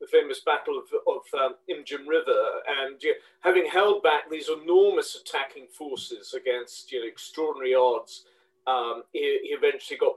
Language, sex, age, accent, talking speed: English, male, 40-59, British, 160 wpm